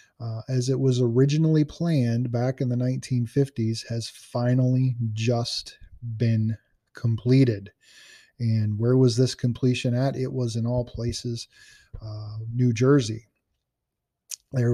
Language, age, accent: English, 20-39, American